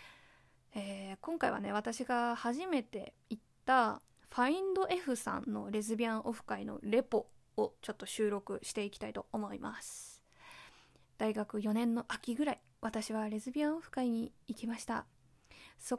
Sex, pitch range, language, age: female, 215-260 Hz, Japanese, 20-39